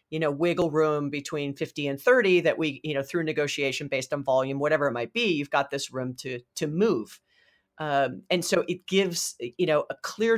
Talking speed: 215 wpm